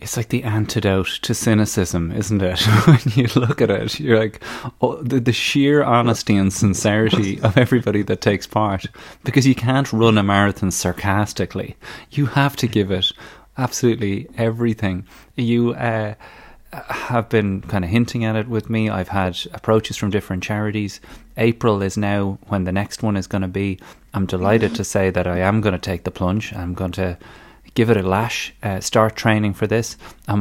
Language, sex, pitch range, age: English, male, 95-115 Hz, 30-49